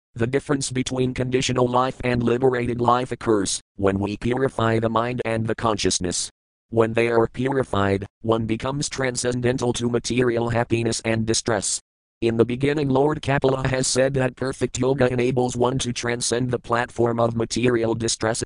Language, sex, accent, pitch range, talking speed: English, male, American, 100-125 Hz, 155 wpm